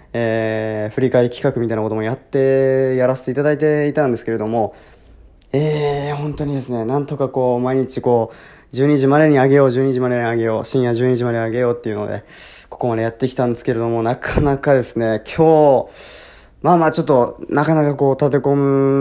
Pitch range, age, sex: 115-140 Hz, 20-39, male